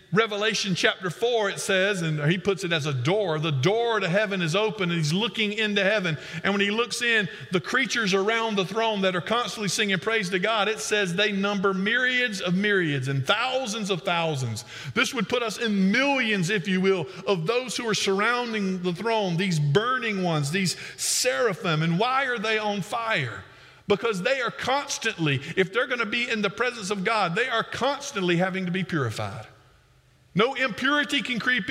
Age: 50-69